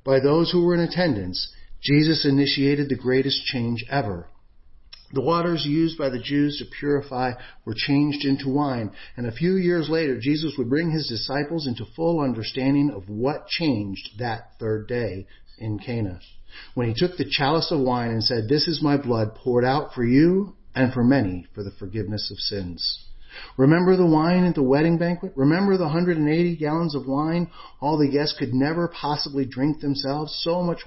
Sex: male